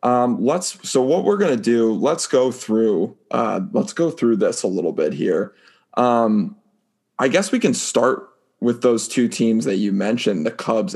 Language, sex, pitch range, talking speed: English, male, 110-130 Hz, 190 wpm